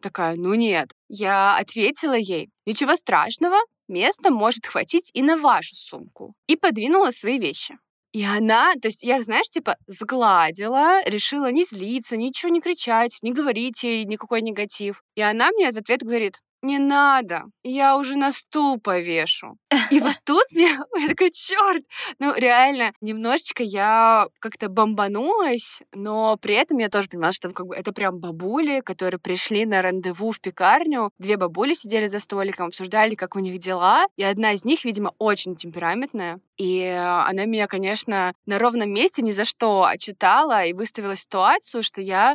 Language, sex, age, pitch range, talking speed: Russian, female, 20-39, 195-275 Hz, 165 wpm